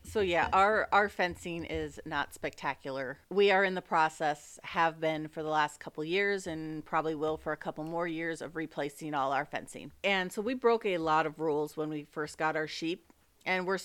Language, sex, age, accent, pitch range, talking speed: English, female, 30-49, American, 155-200 Hz, 210 wpm